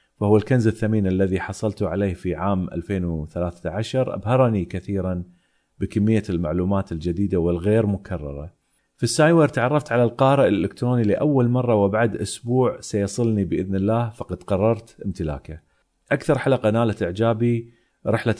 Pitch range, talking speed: 95-120 Hz, 120 wpm